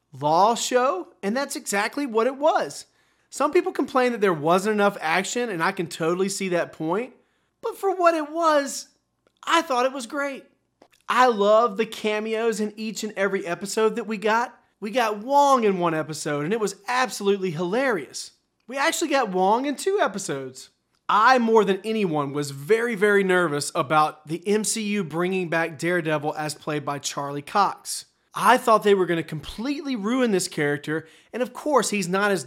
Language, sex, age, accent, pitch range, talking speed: English, male, 30-49, American, 175-250 Hz, 180 wpm